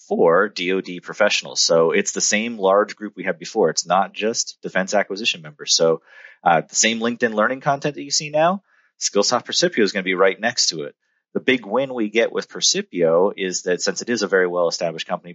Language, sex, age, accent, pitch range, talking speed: English, male, 30-49, American, 90-150 Hz, 215 wpm